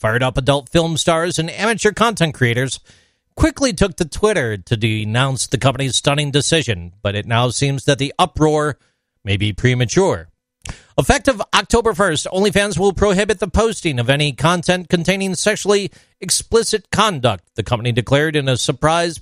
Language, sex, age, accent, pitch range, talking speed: English, male, 40-59, American, 125-185 Hz, 155 wpm